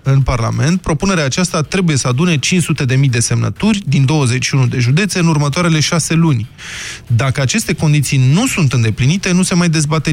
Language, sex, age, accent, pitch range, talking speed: Romanian, male, 20-39, native, 125-170 Hz, 165 wpm